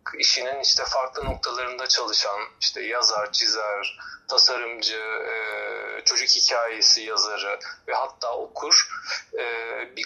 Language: Turkish